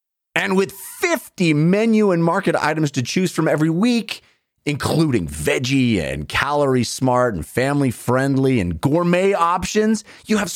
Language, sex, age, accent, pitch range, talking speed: English, male, 30-49, American, 135-220 Hz, 140 wpm